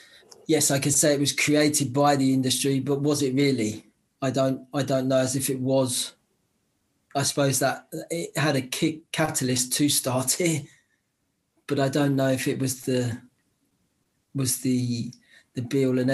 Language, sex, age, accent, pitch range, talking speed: English, male, 20-39, British, 130-145 Hz, 180 wpm